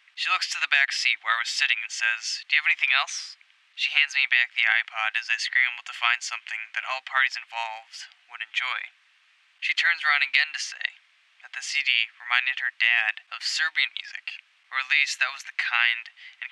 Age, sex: 10-29, male